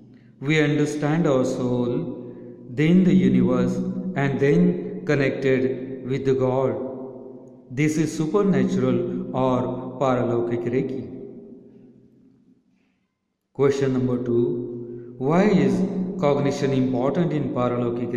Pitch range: 125-175 Hz